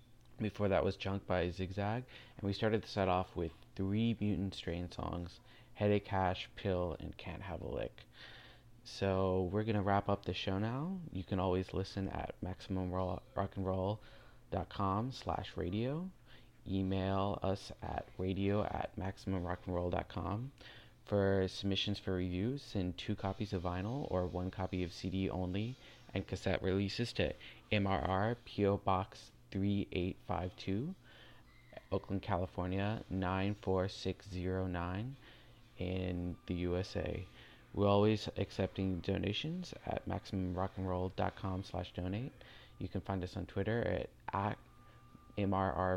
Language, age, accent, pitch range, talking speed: English, 20-39, American, 95-110 Hz, 150 wpm